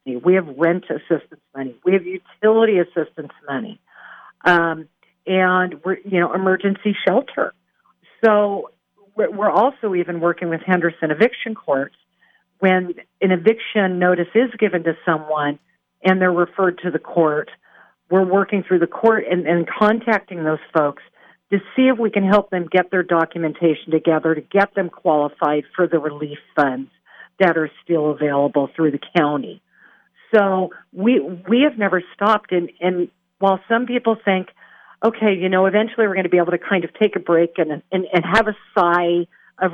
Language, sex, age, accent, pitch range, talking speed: English, female, 50-69, American, 165-200 Hz, 165 wpm